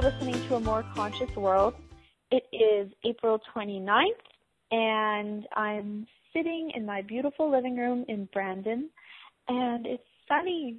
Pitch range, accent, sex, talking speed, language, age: 215-265 Hz, American, female, 130 wpm, English, 20-39